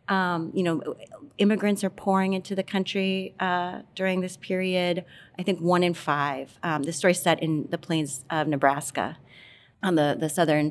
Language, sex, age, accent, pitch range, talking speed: English, female, 30-49, American, 145-185 Hz, 180 wpm